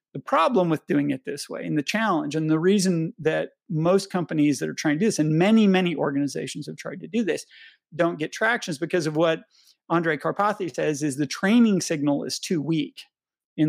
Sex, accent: male, American